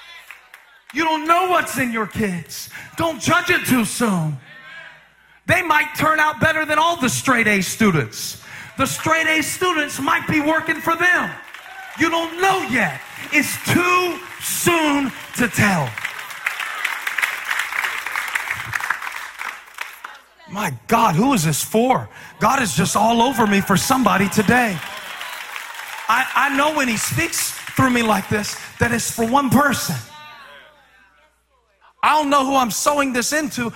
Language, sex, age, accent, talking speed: English, male, 40-59, American, 135 wpm